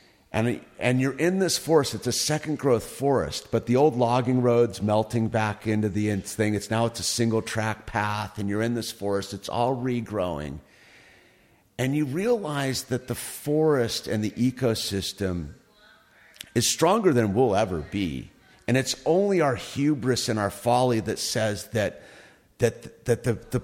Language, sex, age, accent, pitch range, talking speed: English, male, 50-69, American, 100-130 Hz, 170 wpm